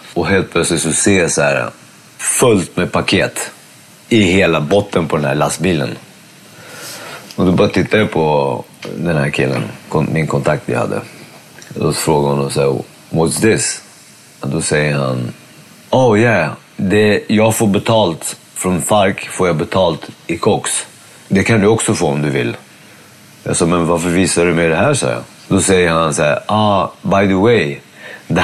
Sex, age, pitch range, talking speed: male, 30-49, 75-105 Hz, 170 wpm